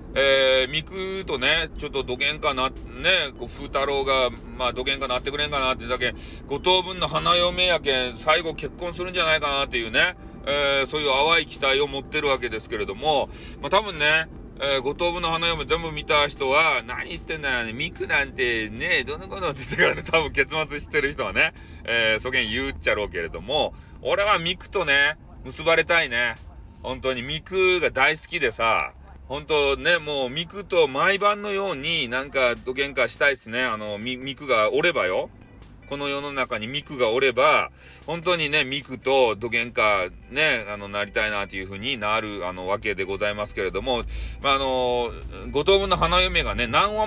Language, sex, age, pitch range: Japanese, male, 30-49, 120-170 Hz